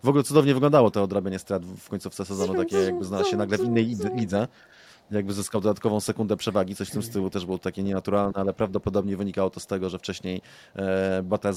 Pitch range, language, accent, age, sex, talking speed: 100-120 Hz, Polish, native, 30-49, male, 205 wpm